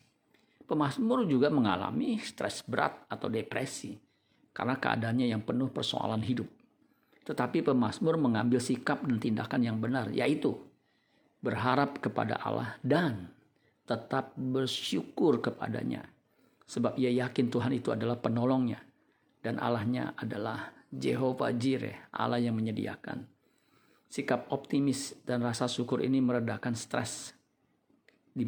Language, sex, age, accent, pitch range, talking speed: Indonesian, male, 50-69, native, 115-130 Hz, 110 wpm